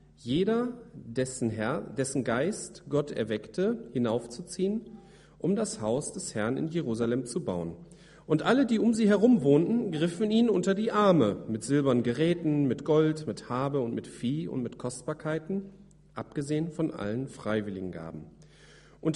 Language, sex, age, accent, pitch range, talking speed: German, male, 40-59, German, 125-170 Hz, 150 wpm